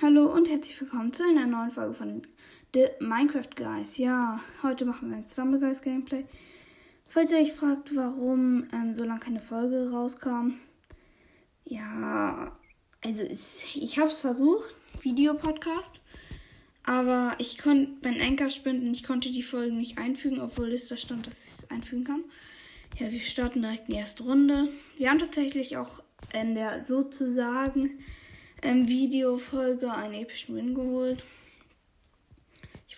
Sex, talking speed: female, 145 wpm